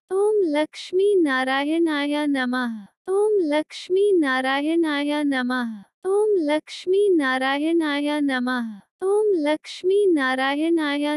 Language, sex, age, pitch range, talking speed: Hindi, female, 20-39, 260-370 Hz, 70 wpm